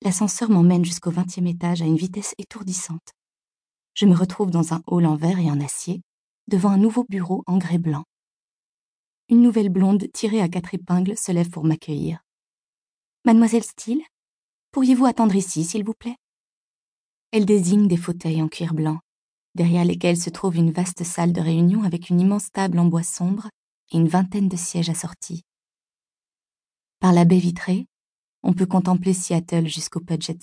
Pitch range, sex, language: 165-200 Hz, female, French